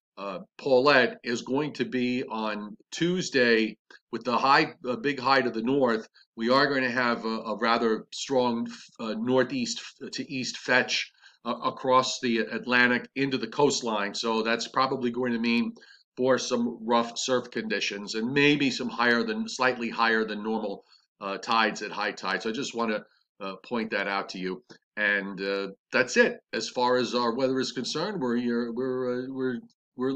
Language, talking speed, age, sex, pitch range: English, 180 wpm, 40-59, male, 110-130 Hz